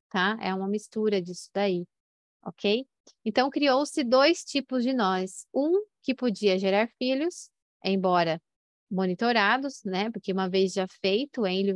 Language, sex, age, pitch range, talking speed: Portuguese, female, 20-39, 195-235 Hz, 145 wpm